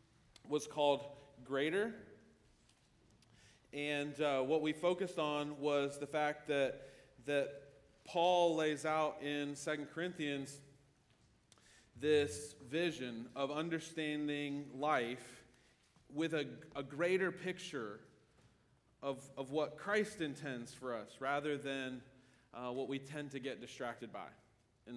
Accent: American